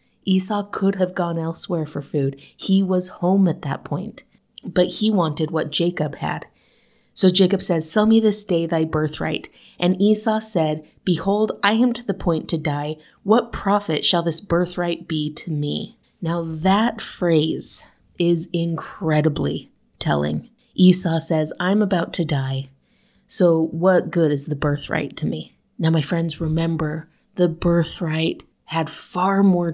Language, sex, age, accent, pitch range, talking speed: English, female, 30-49, American, 160-195 Hz, 155 wpm